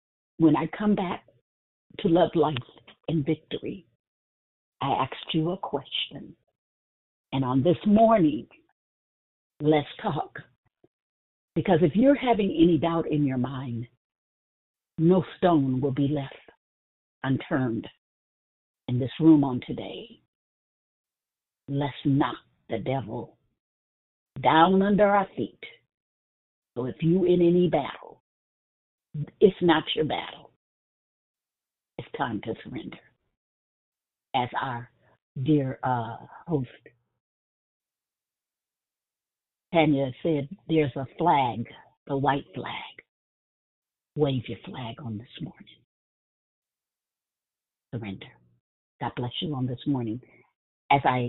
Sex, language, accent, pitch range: female, English, American, 115-160 Hz